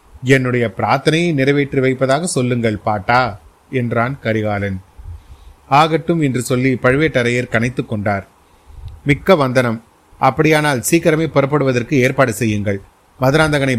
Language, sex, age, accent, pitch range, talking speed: Tamil, male, 30-49, native, 115-145 Hz, 95 wpm